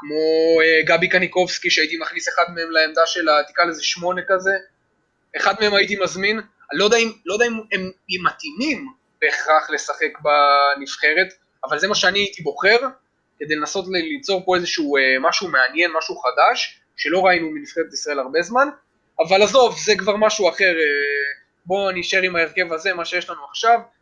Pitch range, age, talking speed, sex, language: 150-205 Hz, 20-39, 160 wpm, male, Hebrew